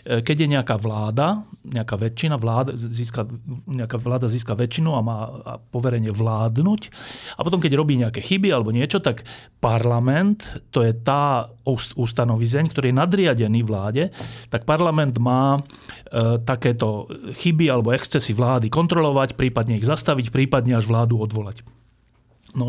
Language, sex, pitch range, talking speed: Slovak, male, 115-140 Hz, 135 wpm